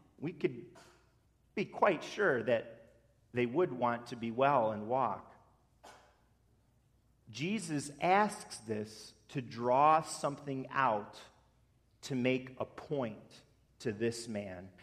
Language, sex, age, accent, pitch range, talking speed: English, male, 40-59, American, 120-190 Hz, 115 wpm